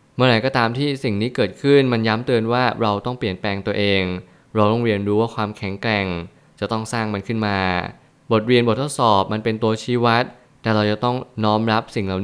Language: Thai